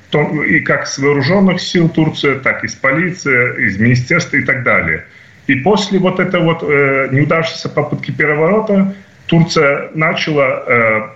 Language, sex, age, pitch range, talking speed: Russian, male, 30-49, 125-160 Hz, 145 wpm